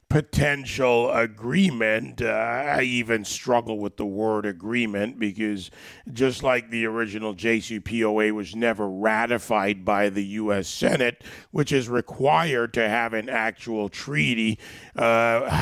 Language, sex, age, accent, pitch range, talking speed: English, male, 40-59, American, 110-125 Hz, 125 wpm